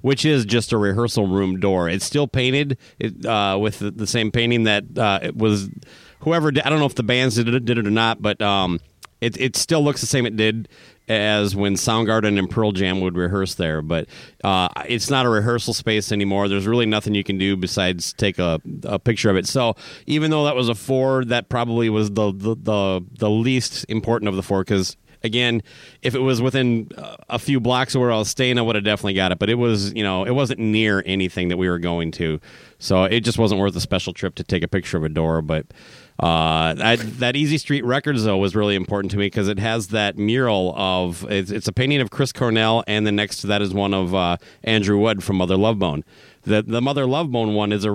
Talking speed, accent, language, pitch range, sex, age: 240 wpm, American, English, 95-120 Hz, male, 30-49